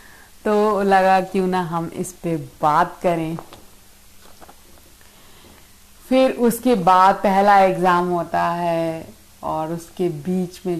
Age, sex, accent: 50-69, female, native